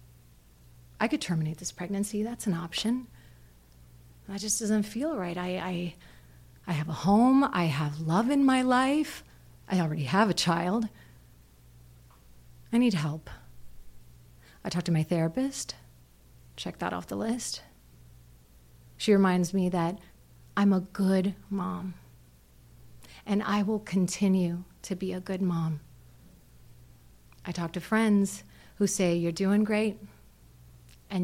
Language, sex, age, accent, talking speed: English, female, 30-49, American, 135 wpm